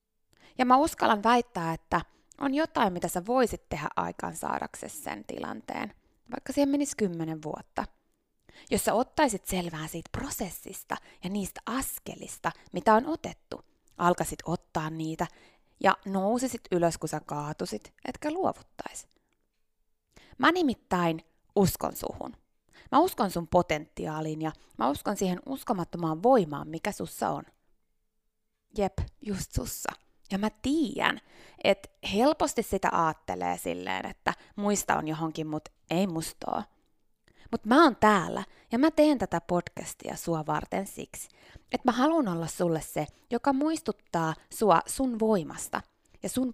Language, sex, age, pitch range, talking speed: Finnish, female, 20-39, 165-255 Hz, 130 wpm